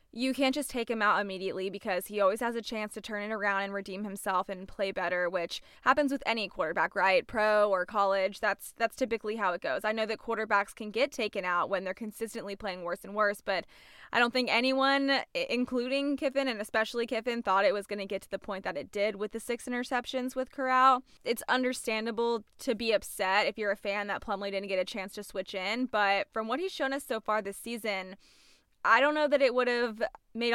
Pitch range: 200-245 Hz